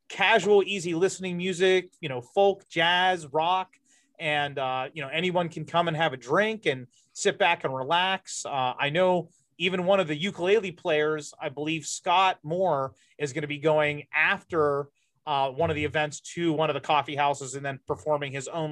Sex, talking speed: male, 190 wpm